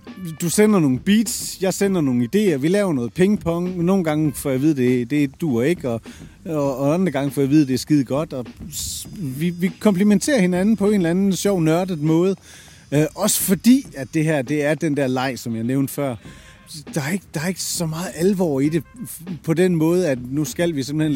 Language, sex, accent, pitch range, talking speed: Danish, male, native, 140-190 Hz, 235 wpm